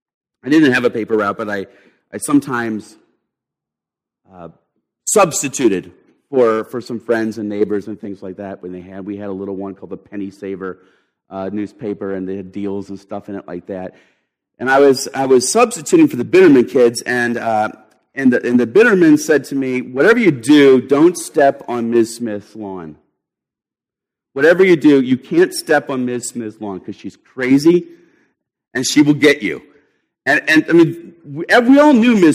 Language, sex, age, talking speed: English, male, 40-59, 190 wpm